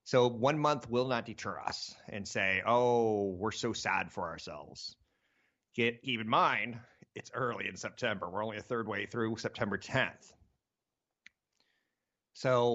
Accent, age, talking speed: American, 30-49, 145 wpm